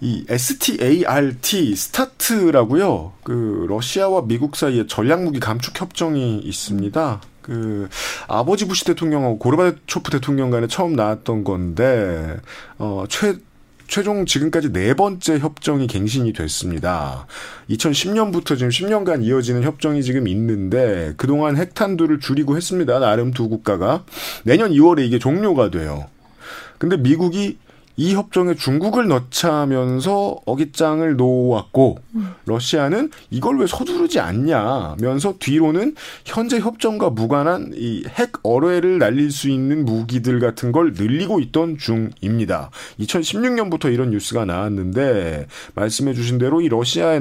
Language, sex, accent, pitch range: Korean, male, native, 115-170 Hz